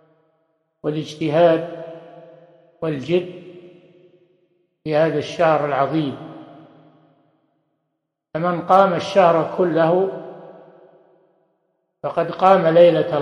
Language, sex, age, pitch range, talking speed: Arabic, male, 60-79, 160-180 Hz, 60 wpm